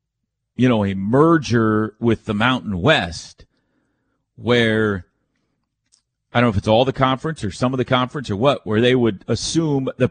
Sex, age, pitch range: male, 40-59, 120-160 Hz